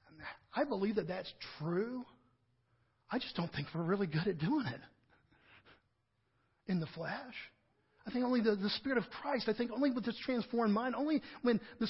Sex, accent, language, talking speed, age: male, American, English, 180 wpm, 50-69